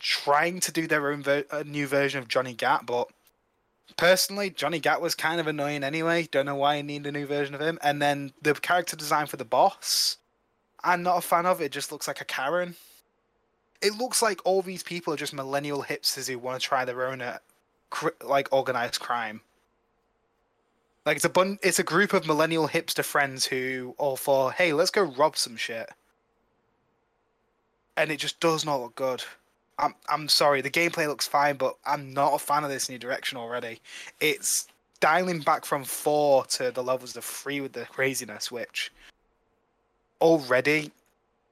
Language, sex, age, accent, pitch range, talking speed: English, male, 10-29, British, 130-155 Hz, 185 wpm